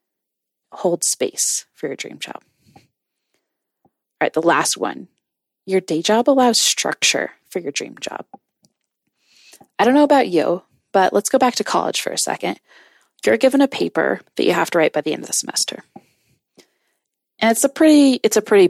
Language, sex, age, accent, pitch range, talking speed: English, female, 20-39, American, 160-255 Hz, 180 wpm